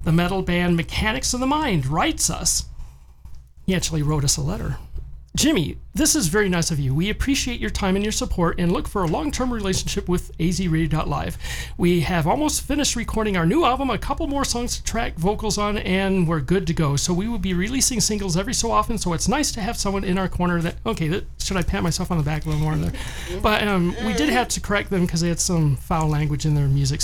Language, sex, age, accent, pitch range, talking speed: English, male, 40-59, American, 160-215 Hz, 245 wpm